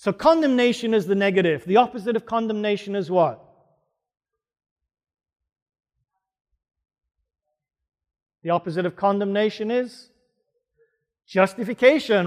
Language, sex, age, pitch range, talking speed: English, male, 40-59, 170-220 Hz, 85 wpm